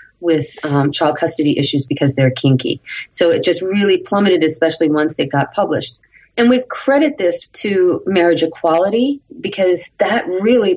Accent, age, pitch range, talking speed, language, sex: American, 30-49, 160-205 Hz, 155 wpm, English, female